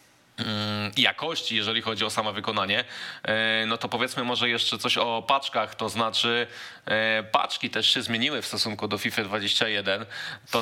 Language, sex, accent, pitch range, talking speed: Polish, male, native, 110-120 Hz, 145 wpm